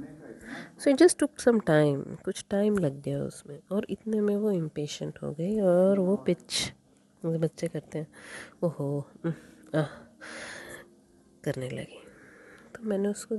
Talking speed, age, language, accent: 125 wpm, 30-49, Hindi, native